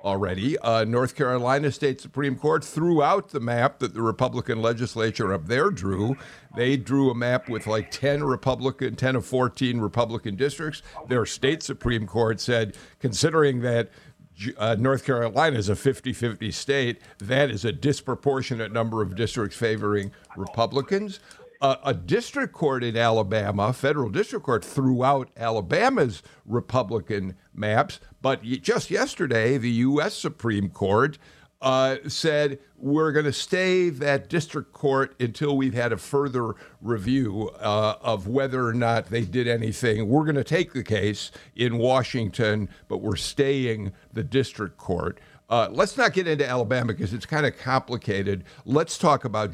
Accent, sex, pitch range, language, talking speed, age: American, male, 110-140 Hz, English, 150 wpm, 50-69